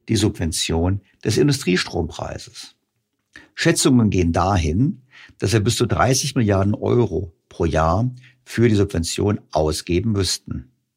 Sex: male